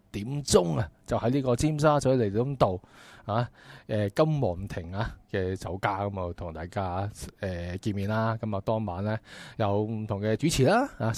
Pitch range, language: 100-120 Hz, Chinese